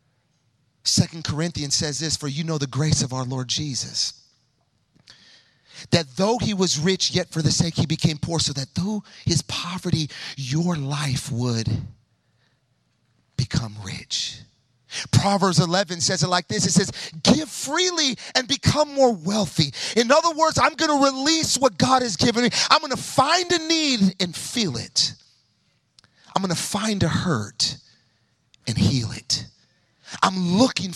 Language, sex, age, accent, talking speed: English, male, 40-59, American, 155 wpm